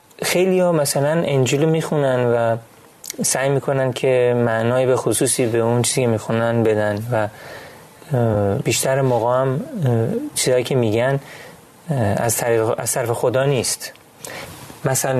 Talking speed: 120 wpm